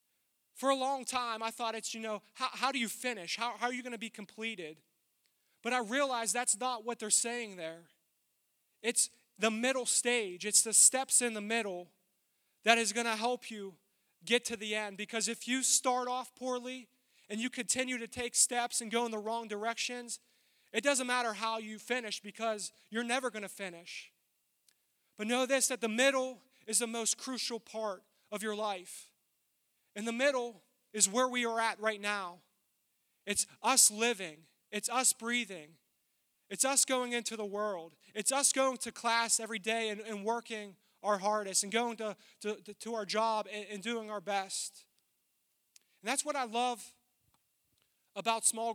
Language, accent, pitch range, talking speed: English, American, 210-245 Hz, 180 wpm